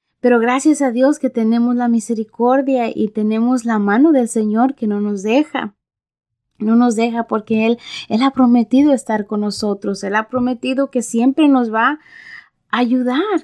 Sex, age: female, 20-39